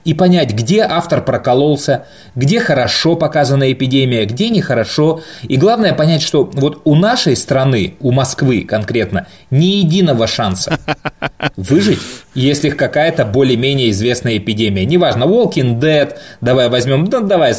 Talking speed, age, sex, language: 130 wpm, 20-39, male, Russian